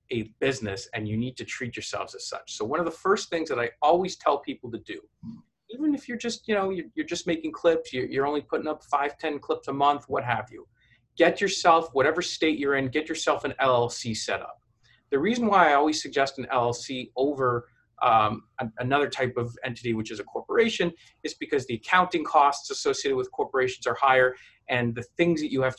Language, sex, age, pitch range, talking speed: English, male, 30-49, 120-170 Hz, 215 wpm